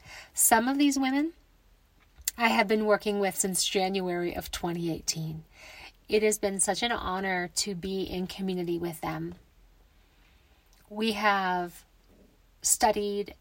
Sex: female